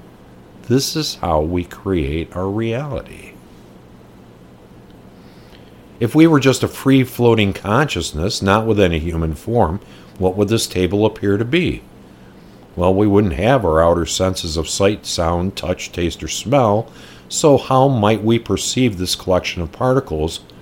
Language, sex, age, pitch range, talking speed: English, male, 50-69, 75-110 Hz, 145 wpm